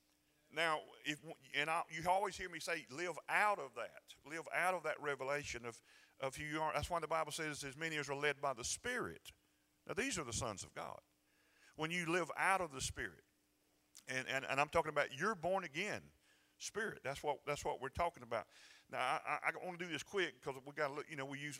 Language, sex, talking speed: English, male, 235 wpm